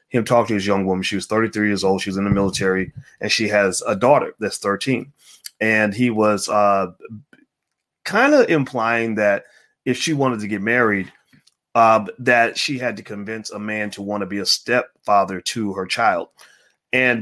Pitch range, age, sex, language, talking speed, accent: 100-125 Hz, 30-49, male, English, 195 wpm, American